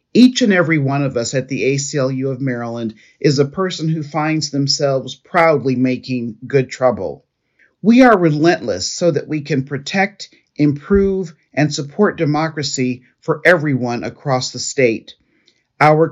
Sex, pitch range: male, 135-175 Hz